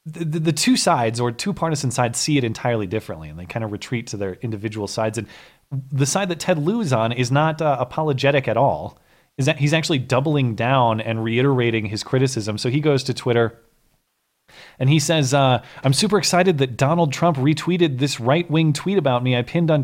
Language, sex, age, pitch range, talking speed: English, male, 30-49, 125-155 Hz, 210 wpm